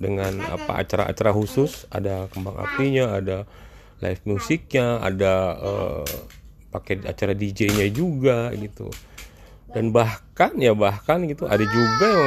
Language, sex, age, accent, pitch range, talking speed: Indonesian, male, 30-49, native, 95-135 Hz, 120 wpm